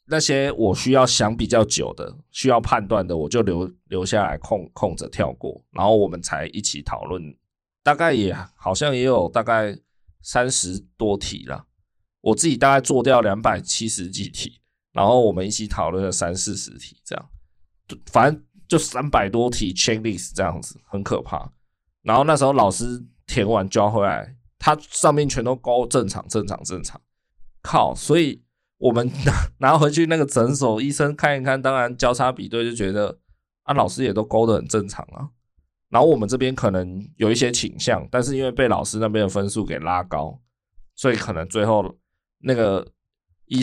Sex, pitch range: male, 90-125 Hz